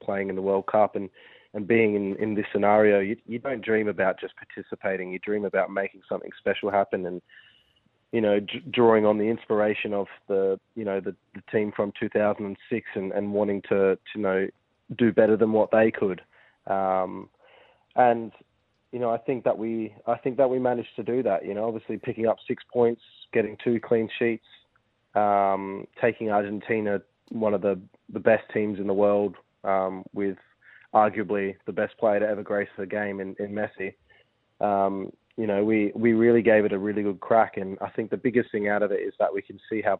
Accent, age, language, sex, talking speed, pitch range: Australian, 20-39, English, male, 205 wpm, 100-115 Hz